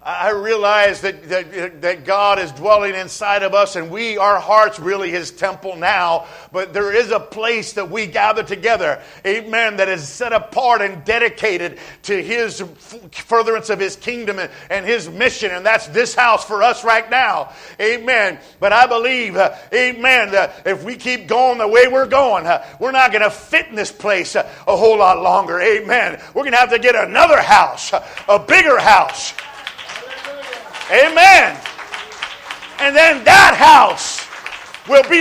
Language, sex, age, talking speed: English, male, 50-69, 170 wpm